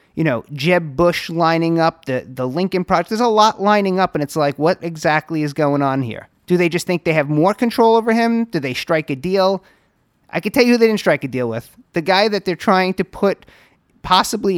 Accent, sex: American, male